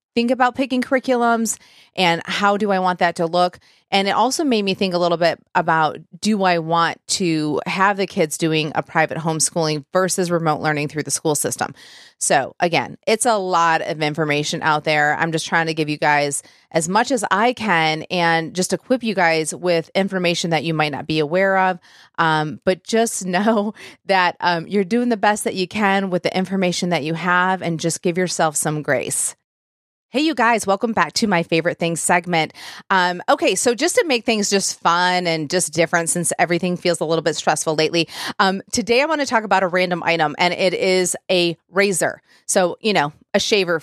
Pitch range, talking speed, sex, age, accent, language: 165-200 Hz, 205 wpm, female, 30-49, American, English